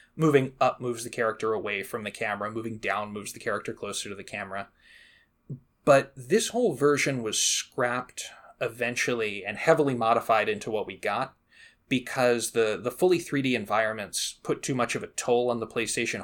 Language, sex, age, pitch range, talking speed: English, male, 20-39, 115-145 Hz, 175 wpm